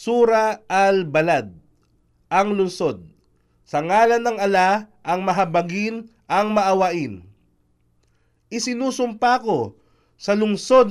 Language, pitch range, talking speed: Filipino, 160-220 Hz, 90 wpm